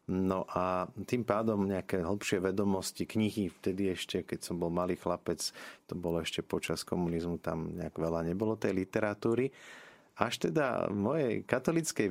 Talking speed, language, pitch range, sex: 155 wpm, Slovak, 90-105 Hz, male